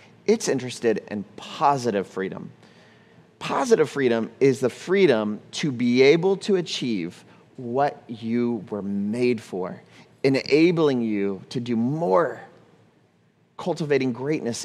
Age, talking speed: 30-49, 110 wpm